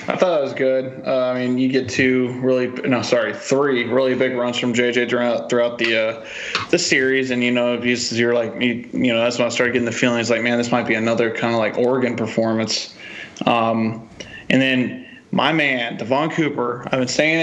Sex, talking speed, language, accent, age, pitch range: male, 215 wpm, English, American, 20-39, 120-130 Hz